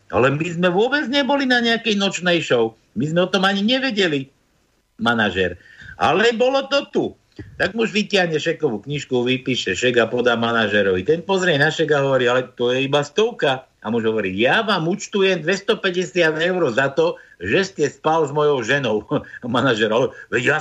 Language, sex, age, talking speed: Slovak, male, 60-79, 170 wpm